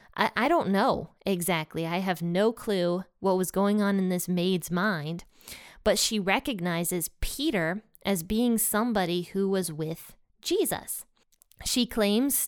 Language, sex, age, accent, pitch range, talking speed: English, female, 20-39, American, 180-225 Hz, 140 wpm